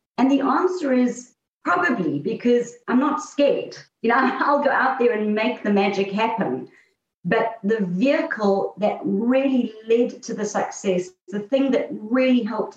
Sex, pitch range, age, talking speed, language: female, 195-245 Hz, 40-59, 160 wpm, English